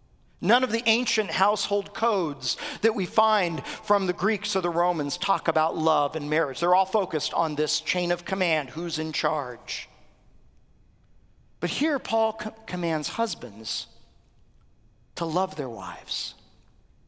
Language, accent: English, American